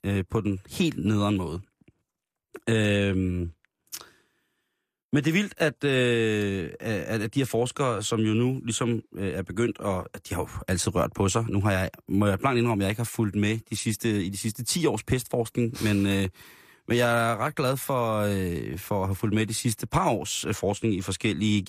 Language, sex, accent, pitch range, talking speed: Danish, male, native, 100-120 Hz, 220 wpm